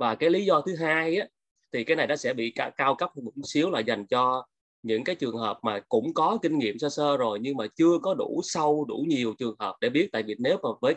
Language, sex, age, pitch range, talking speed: Vietnamese, male, 20-39, 115-150 Hz, 275 wpm